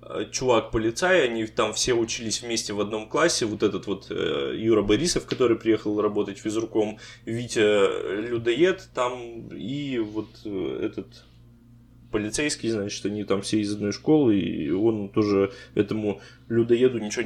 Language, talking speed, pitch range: Russian, 135 wpm, 110-125 Hz